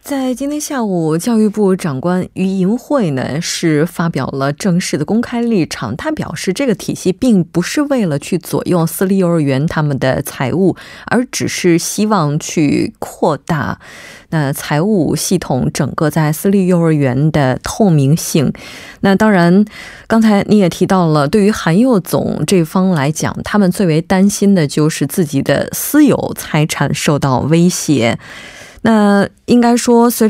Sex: female